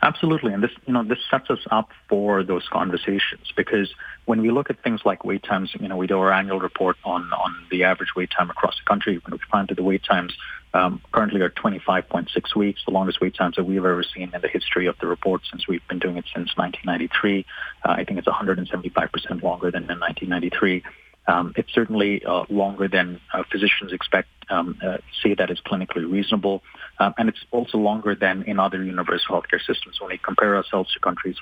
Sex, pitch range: male, 95-105 Hz